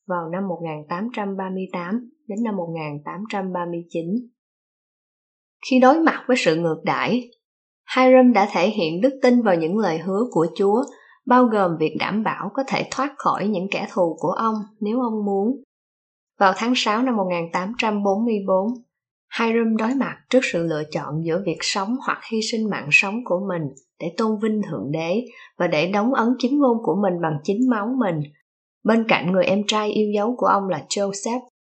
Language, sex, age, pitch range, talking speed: Vietnamese, female, 20-39, 190-245 Hz, 175 wpm